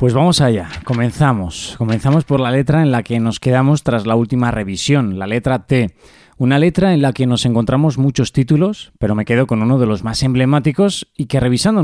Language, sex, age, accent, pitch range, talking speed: Spanish, male, 20-39, Spanish, 110-150 Hz, 210 wpm